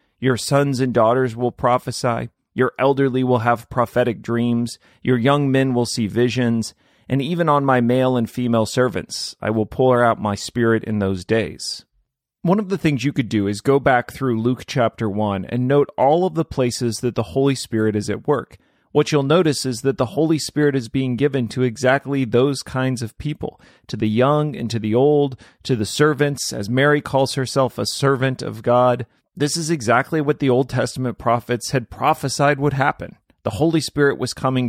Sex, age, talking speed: male, 30-49, 195 wpm